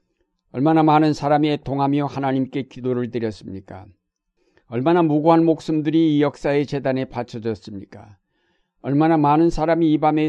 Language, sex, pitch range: Korean, male, 120-150 Hz